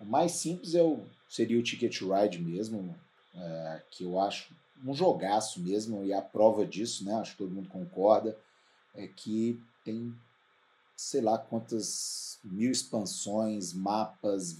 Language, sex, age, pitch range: Portuguese, male, 40-59, 95-115 Hz